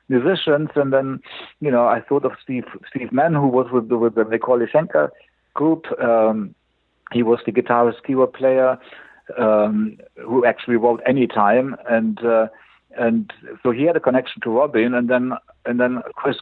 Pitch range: 115-140 Hz